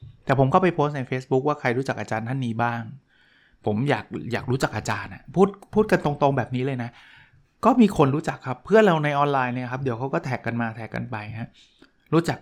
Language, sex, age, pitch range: Thai, male, 20-39, 120-150 Hz